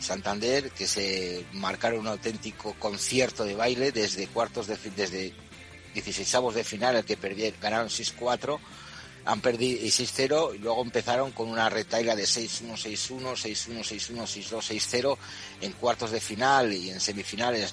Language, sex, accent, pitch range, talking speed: Spanish, male, Spanish, 105-130 Hz, 145 wpm